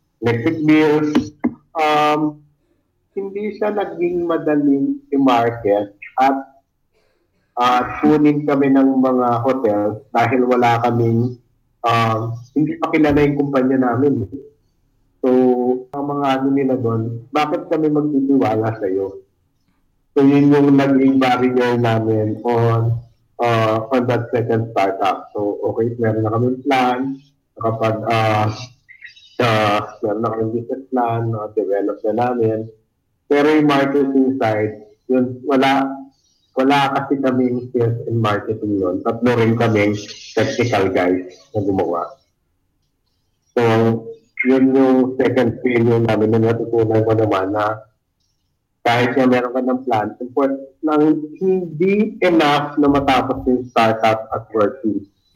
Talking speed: 115 wpm